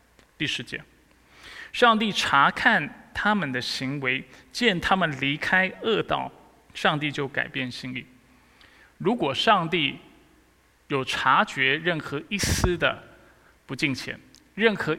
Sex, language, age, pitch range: male, Chinese, 20-39, 130-195 Hz